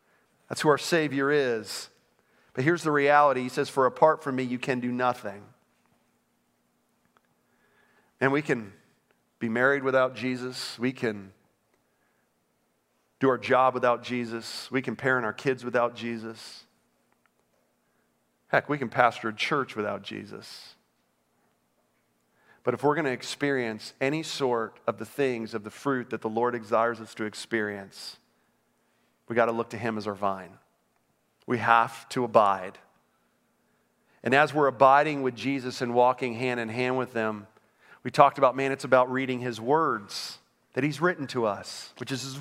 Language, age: English, 40-59